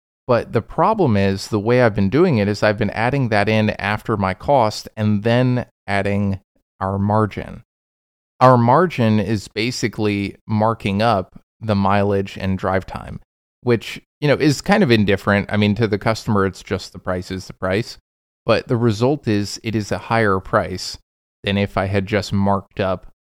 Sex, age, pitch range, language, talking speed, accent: male, 20-39, 95-110 Hz, English, 180 wpm, American